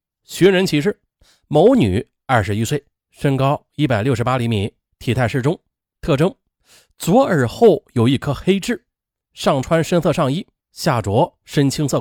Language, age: Chinese, 30-49